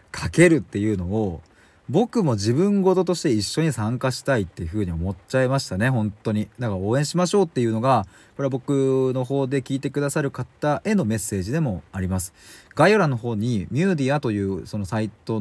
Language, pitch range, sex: Japanese, 105-155 Hz, male